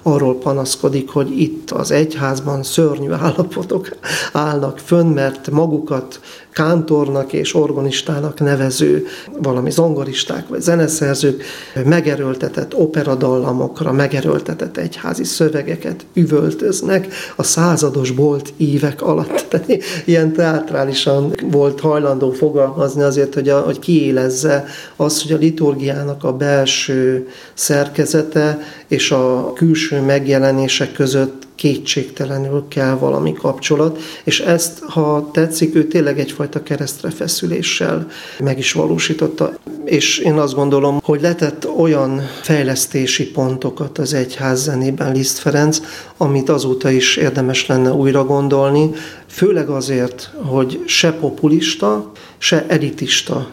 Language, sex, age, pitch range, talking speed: Hungarian, male, 40-59, 135-155 Hz, 110 wpm